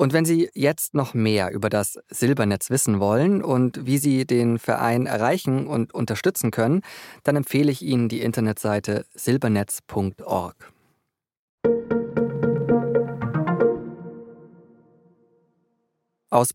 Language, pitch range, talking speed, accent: German, 100-130 Hz, 100 wpm, German